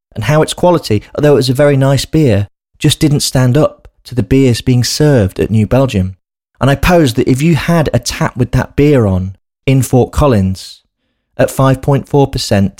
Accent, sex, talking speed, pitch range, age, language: British, male, 190 wpm, 105-140 Hz, 30-49, English